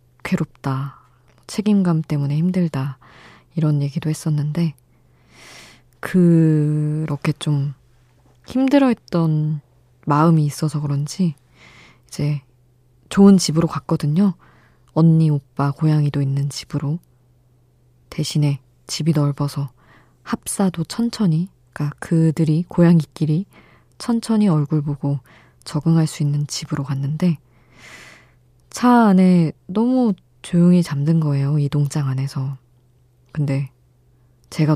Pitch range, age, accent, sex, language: 125-160 Hz, 20-39, native, female, Korean